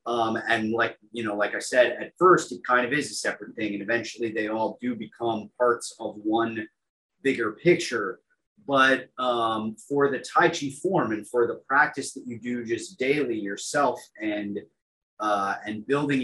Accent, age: American, 30-49